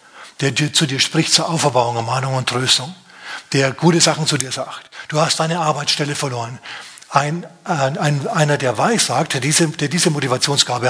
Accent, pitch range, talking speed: German, 135-175 Hz, 180 wpm